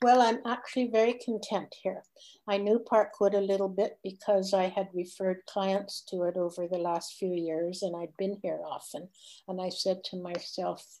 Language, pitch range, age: English, 185-215 Hz, 60-79